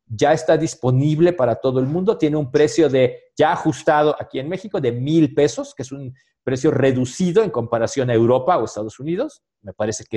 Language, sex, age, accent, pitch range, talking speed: Spanish, male, 40-59, Mexican, 120-175 Hz, 200 wpm